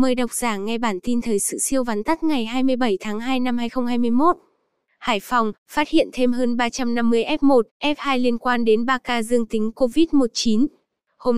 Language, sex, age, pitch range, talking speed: Vietnamese, female, 10-29, 225-275 Hz, 185 wpm